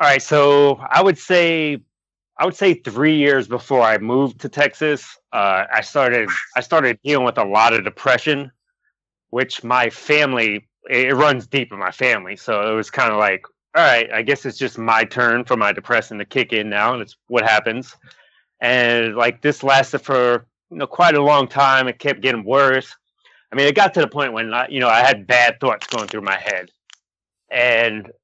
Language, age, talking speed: English, 30-49, 205 wpm